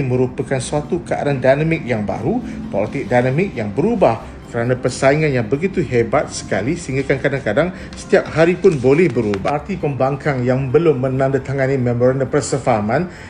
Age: 50-69